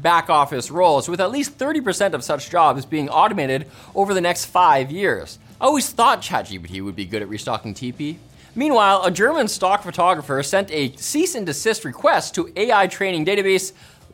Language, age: English, 20-39